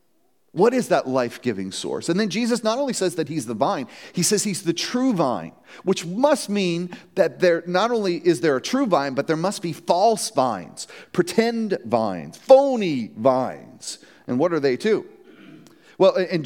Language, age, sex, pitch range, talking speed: English, 40-59, male, 160-225 Hz, 180 wpm